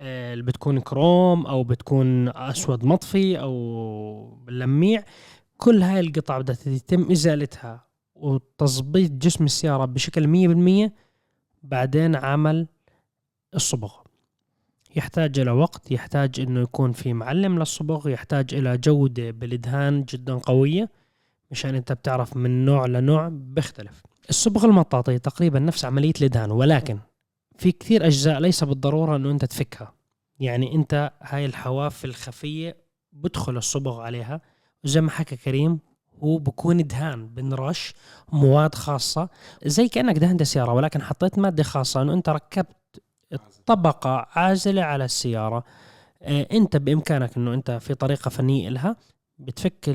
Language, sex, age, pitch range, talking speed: Arabic, male, 20-39, 125-160 Hz, 125 wpm